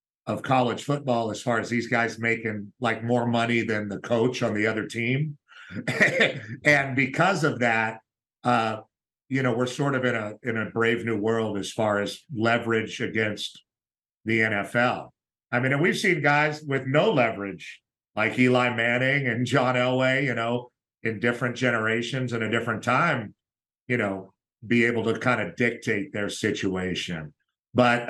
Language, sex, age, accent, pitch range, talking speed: English, male, 50-69, American, 110-125 Hz, 165 wpm